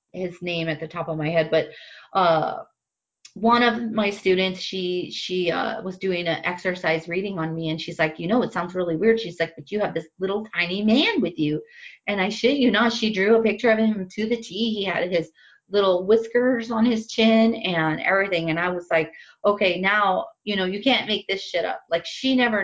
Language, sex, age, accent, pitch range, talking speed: English, female, 30-49, American, 160-205 Hz, 225 wpm